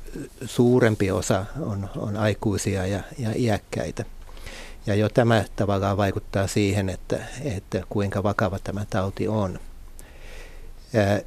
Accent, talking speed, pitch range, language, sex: native, 115 wpm, 100-115 Hz, Finnish, male